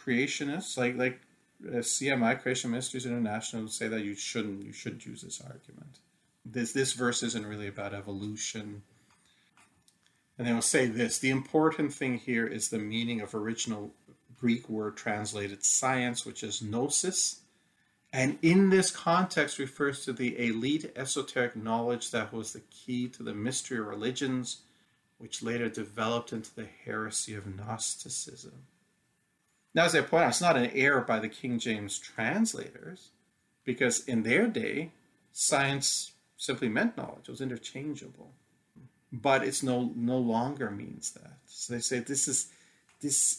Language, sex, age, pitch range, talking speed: English, male, 40-59, 110-130 Hz, 155 wpm